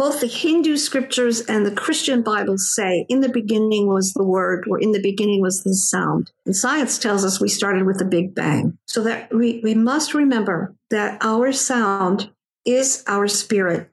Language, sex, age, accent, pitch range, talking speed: English, female, 50-69, American, 200-255 Hz, 190 wpm